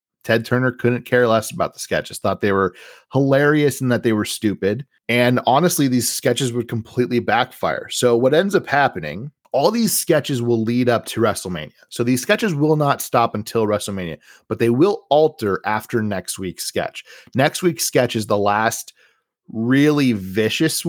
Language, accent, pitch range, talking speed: English, American, 105-130 Hz, 175 wpm